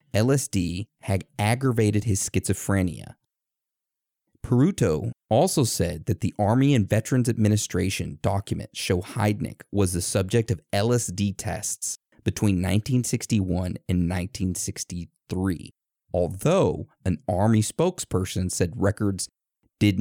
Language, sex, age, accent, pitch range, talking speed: English, male, 30-49, American, 95-120 Hz, 100 wpm